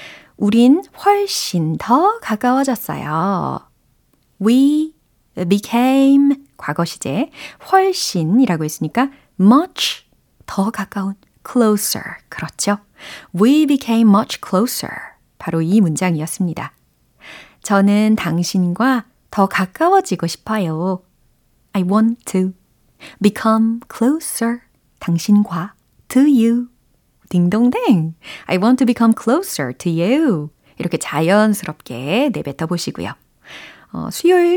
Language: Korean